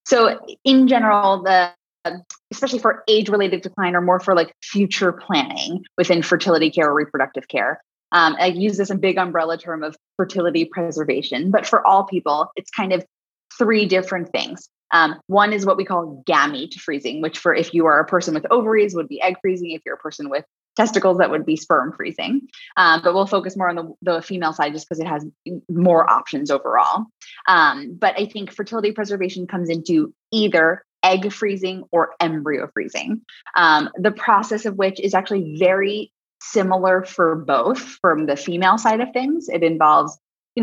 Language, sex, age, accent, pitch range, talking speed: English, female, 20-39, American, 170-215 Hz, 185 wpm